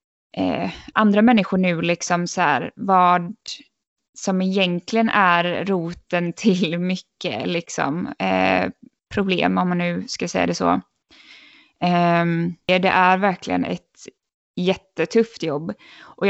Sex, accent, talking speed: female, native, 120 wpm